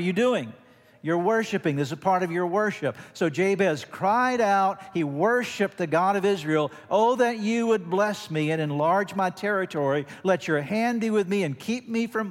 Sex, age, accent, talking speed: male, 50-69, American, 200 wpm